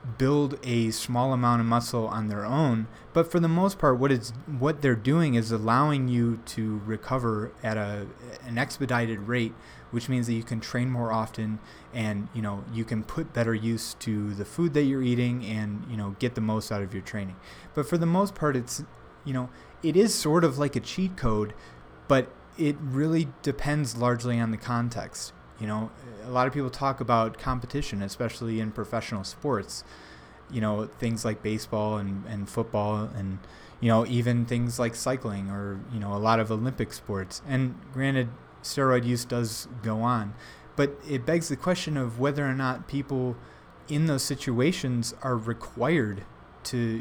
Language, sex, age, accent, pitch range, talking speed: English, male, 20-39, American, 110-135 Hz, 185 wpm